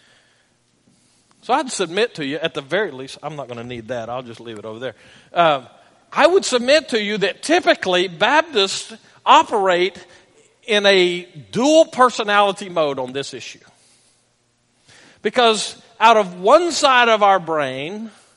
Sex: male